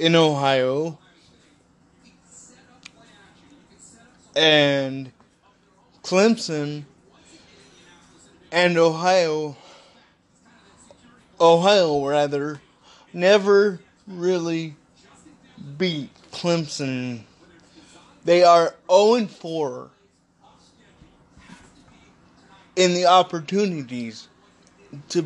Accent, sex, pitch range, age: American, male, 145-180 Hz, 20-39